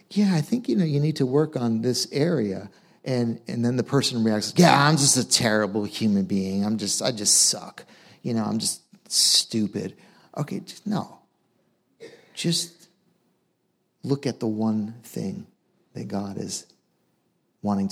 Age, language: 50-69, English